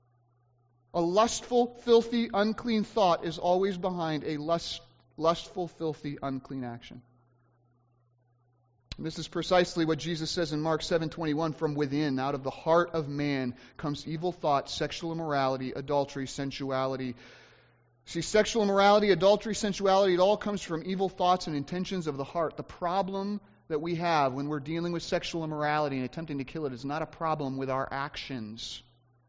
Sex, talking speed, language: male, 160 wpm, English